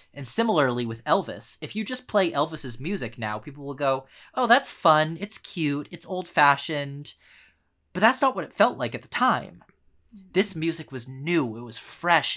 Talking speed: 185 wpm